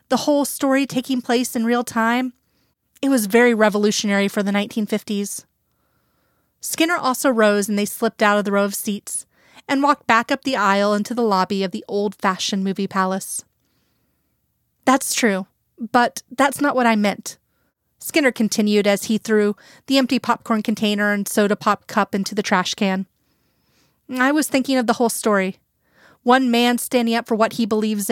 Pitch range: 205-255 Hz